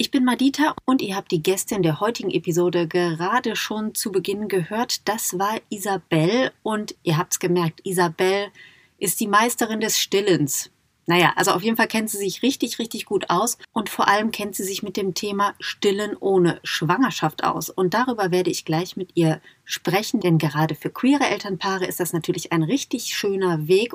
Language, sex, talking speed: German, female, 190 wpm